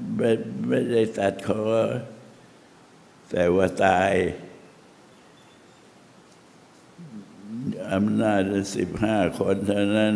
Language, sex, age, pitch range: Thai, male, 60-79, 90-100 Hz